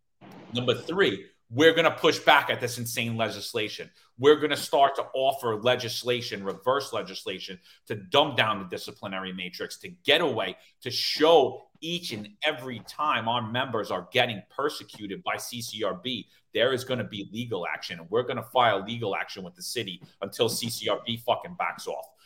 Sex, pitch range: male, 115-160 Hz